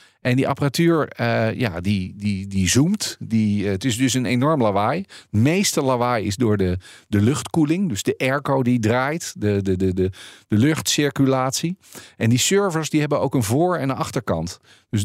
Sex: male